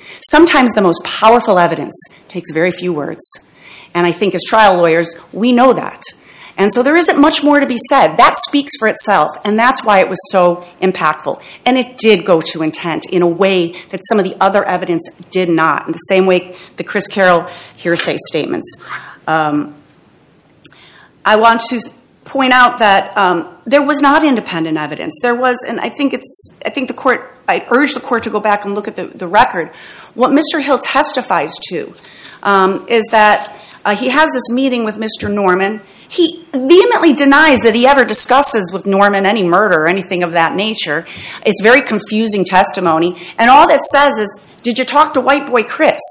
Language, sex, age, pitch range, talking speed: English, female, 40-59, 190-270 Hz, 195 wpm